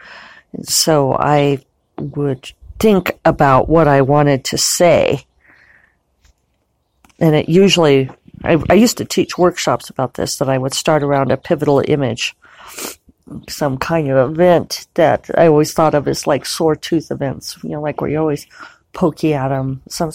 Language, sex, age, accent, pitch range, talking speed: English, female, 40-59, American, 135-165 Hz, 160 wpm